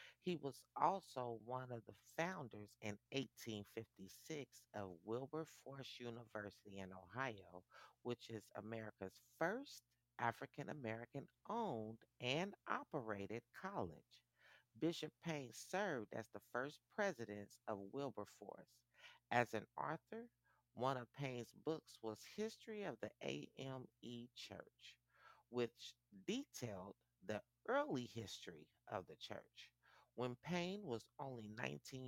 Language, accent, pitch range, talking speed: English, American, 105-145 Hz, 110 wpm